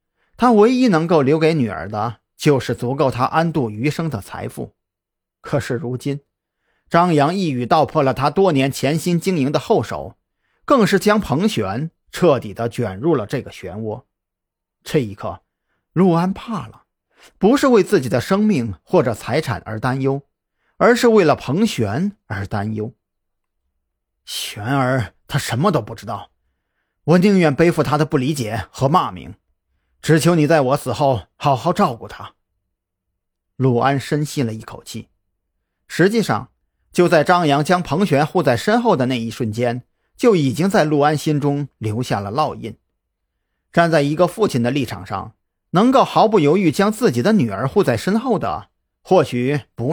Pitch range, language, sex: 100-165 Hz, Chinese, male